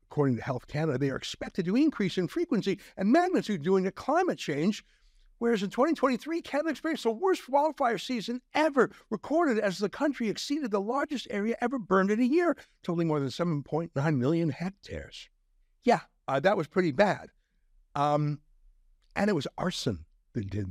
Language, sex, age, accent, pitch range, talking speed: English, male, 60-79, American, 135-215 Hz, 170 wpm